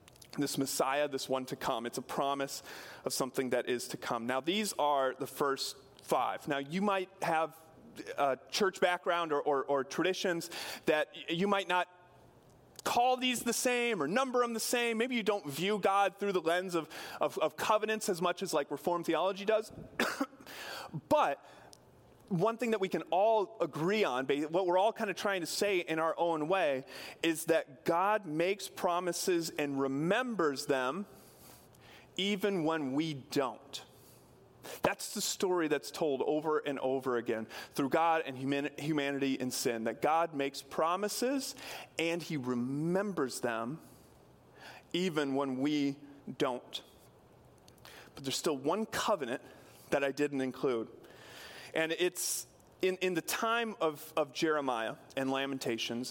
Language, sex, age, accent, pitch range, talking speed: English, male, 30-49, American, 140-195 Hz, 155 wpm